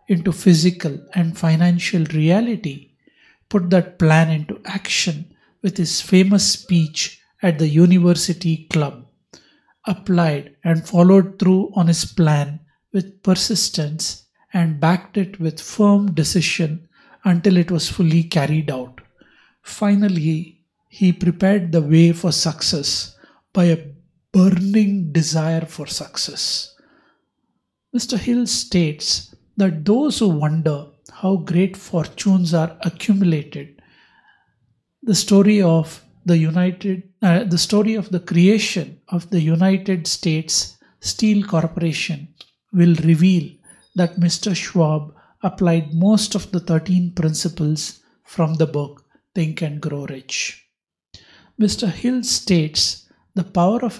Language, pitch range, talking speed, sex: English, 160-190 Hz, 115 wpm, male